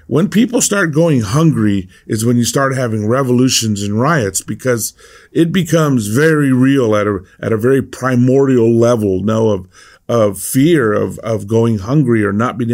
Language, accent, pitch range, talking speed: English, American, 115-155 Hz, 160 wpm